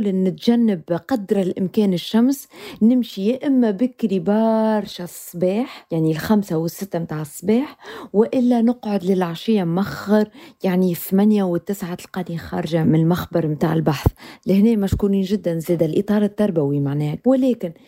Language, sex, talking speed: Arabic, female, 120 wpm